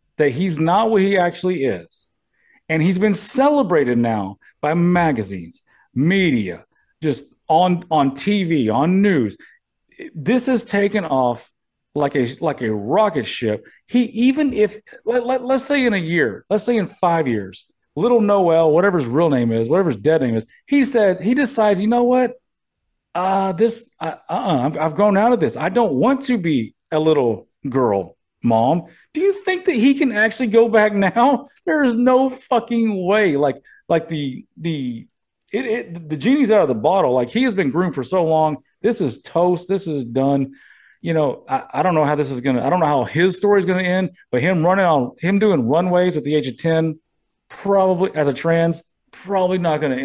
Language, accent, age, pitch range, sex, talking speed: English, American, 40-59, 145-215 Hz, male, 195 wpm